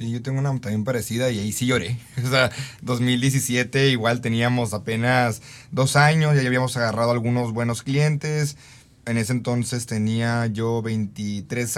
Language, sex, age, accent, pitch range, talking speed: Spanish, male, 30-49, Mexican, 115-150 Hz, 155 wpm